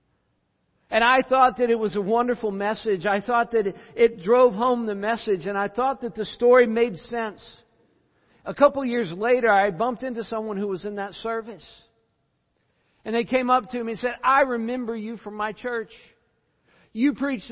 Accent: American